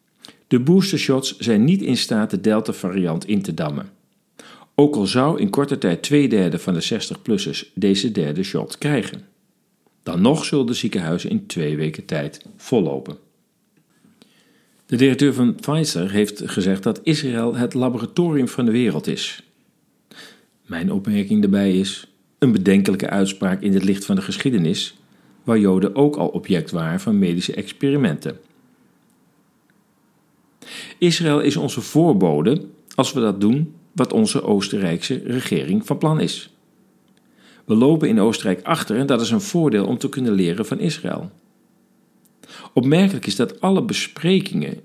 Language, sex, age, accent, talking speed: Dutch, male, 50-69, Dutch, 145 wpm